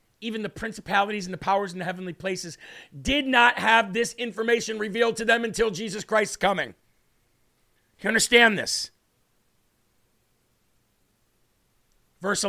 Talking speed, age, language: 125 wpm, 50-69, English